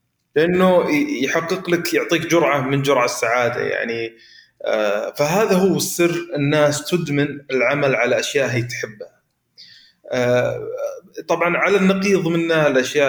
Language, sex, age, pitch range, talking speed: Arabic, male, 30-49, 130-180 Hz, 110 wpm